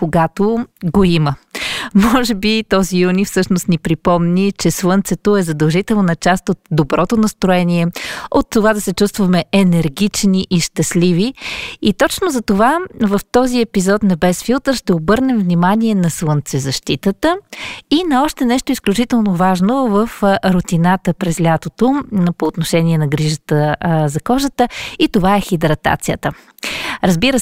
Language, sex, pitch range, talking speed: Bulgarian, female, 175-230 Hz, 135 wpm